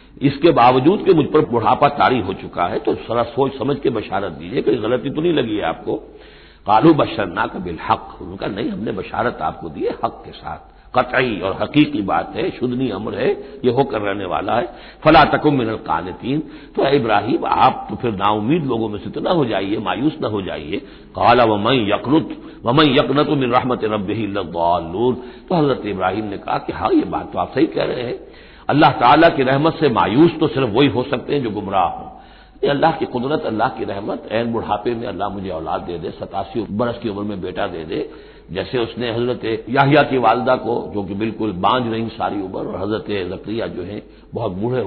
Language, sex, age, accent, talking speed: Hindi, male, 60-79, native, 200 wpm